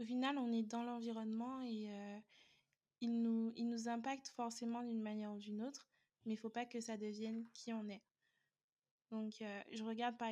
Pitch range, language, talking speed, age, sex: 205-230 Hz, French, 200 wpm, 20-39, female